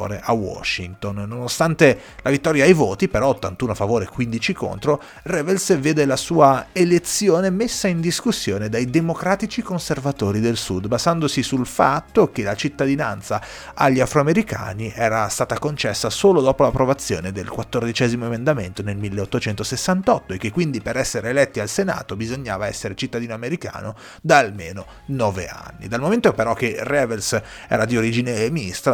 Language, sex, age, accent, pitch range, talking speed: Italian, male, 30-49, native, 100-130 Hz, 145 wpm